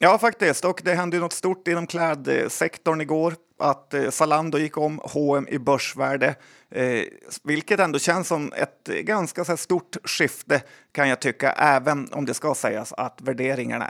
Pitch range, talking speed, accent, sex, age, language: 135-160 Hz, 165 wpm, native, male, 30-49, Swedish